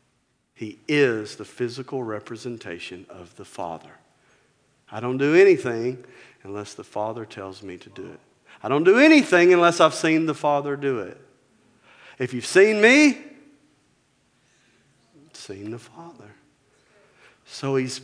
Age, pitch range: 50-69, 120-170 Hz